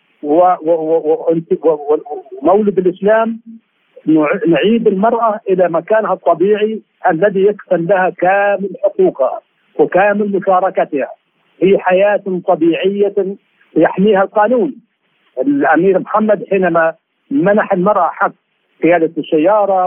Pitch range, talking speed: 165-210 Hz, 80 wpm